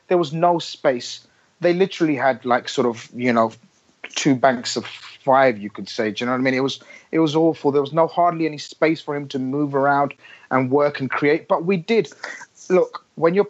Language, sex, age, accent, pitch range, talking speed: English, male, 30-49, British, 145-185 Hz, 225 wpm